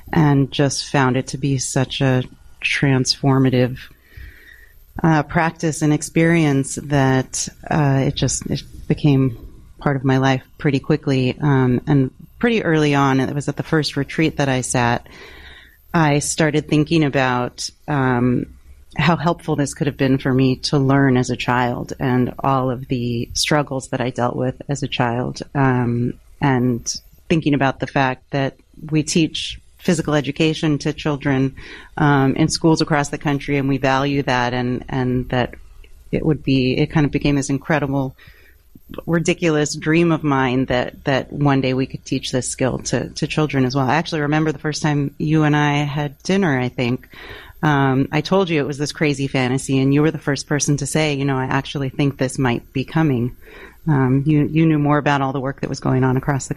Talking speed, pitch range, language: 185 wpm, 130-150 Hz, English